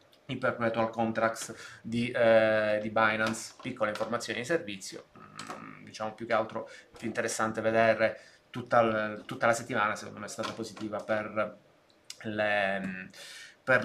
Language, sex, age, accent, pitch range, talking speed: Italian, male, 20-39, native, 110-120 Hz, 140 wpm